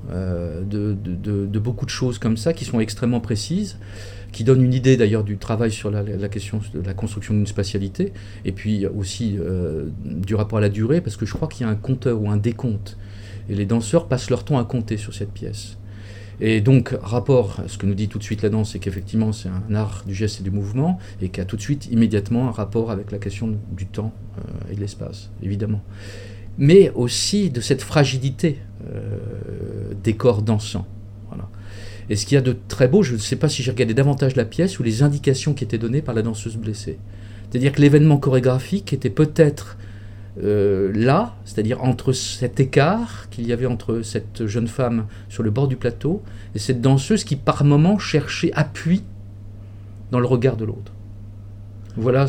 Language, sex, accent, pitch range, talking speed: French, male, French, 100-125 Hz, 205 wpm